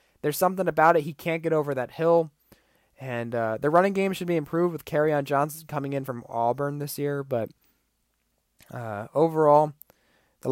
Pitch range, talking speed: 130-165 Hz, 185 wpm